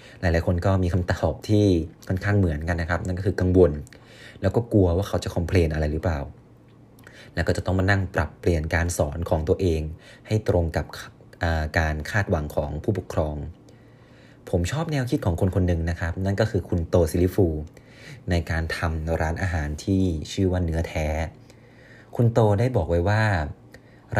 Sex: male